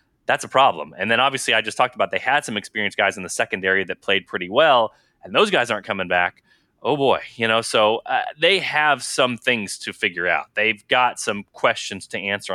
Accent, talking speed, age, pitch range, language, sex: American, 225 wpm, 20-39, 115-155 Hz, English, male